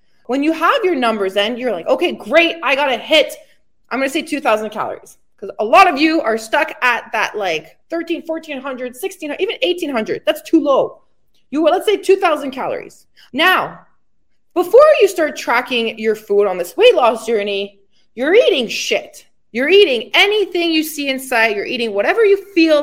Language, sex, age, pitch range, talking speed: English, female, 20-39, 235-360 Hz, 185 wpm